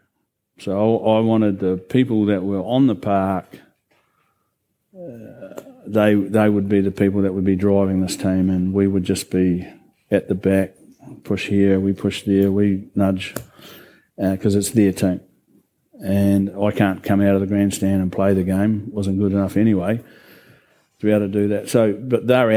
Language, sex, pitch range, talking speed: English, male, 100-110 Hz, 185 wpm